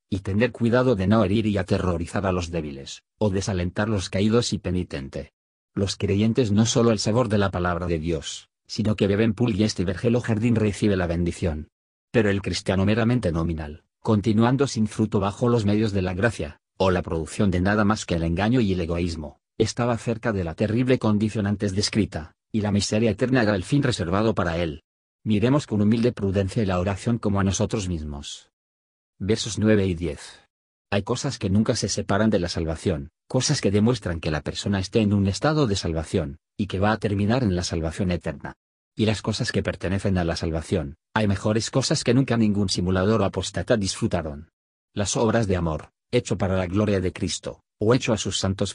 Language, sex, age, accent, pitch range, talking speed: Spanish, male, 40-59, Spanish, 90-110 Hz, 200 wpm